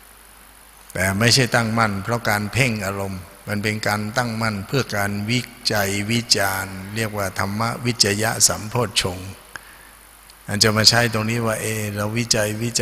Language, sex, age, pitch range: Thai, male, 60-79, 95-110 Hz